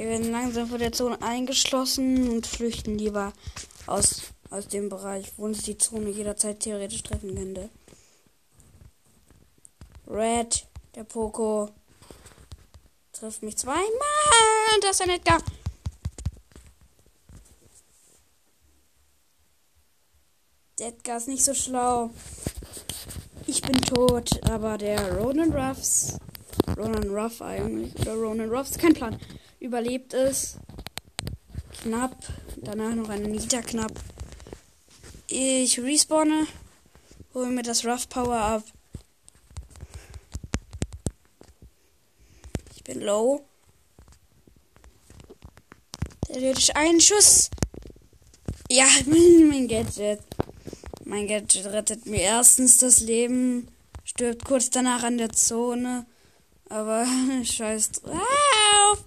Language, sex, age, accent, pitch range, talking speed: German, female, 20-39, German, 195-255 Hz, 95 wpm